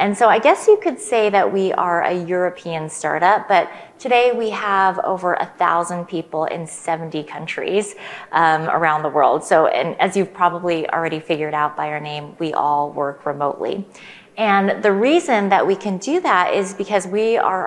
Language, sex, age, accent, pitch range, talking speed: English, female, 30-49, American, 155-195 Hz, 185 wpm